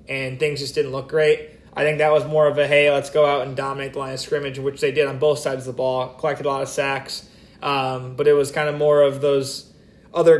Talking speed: 270 wpm